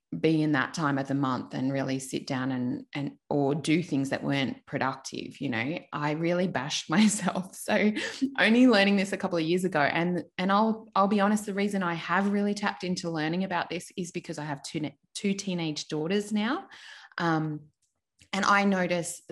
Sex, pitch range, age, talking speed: female, 160-200 Hz, 20-39, 195 wpm